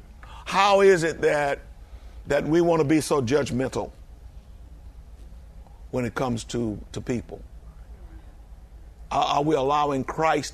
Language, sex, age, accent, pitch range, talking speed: English, male, 50-69, American, 75-120 Hz, 125 wpm